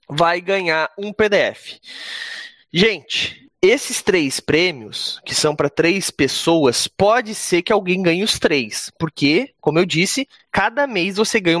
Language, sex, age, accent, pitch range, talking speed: Portuguese, male, 20-39, Brazilian, 160-230 Hz, 145 wpm